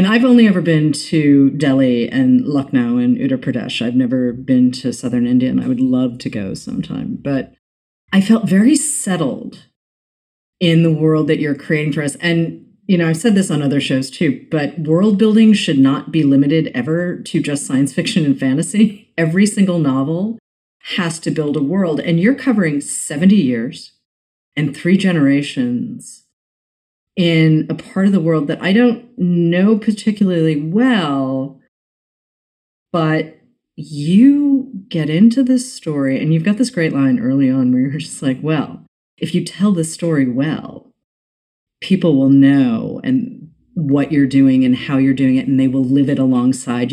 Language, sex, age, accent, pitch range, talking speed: English, female, 40-59, American, 135-215 Hz, 170 wpm